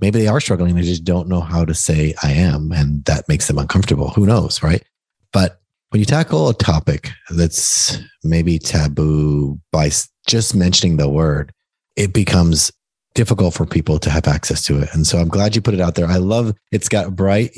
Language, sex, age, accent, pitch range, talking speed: English, male, 30-49, American, 85-105 Hz, 200 wpm